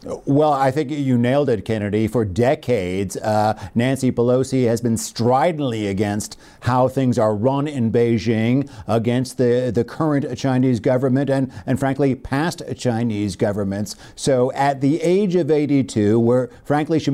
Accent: American